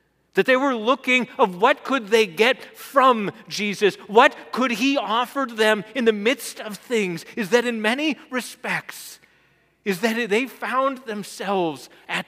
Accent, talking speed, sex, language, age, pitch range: American, 155 wpm, male, English, 40-59, 185-250 Hz